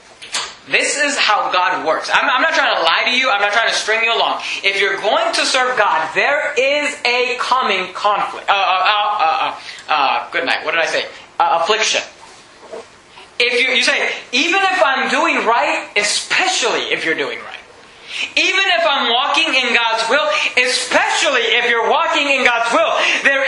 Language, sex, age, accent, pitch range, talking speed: English, male, 20-39, American, 205-280 Hz, 190 wpm